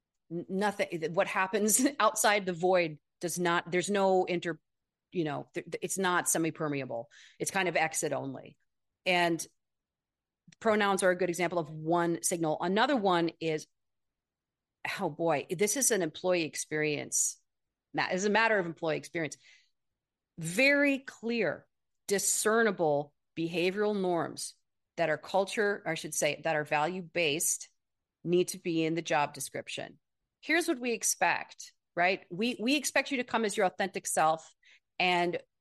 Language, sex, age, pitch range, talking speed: English, female, 40-59, 165-210 Hz, 145 wpm